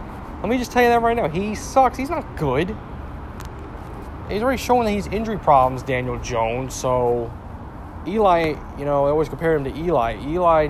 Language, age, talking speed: English, 20-39, 185 wpm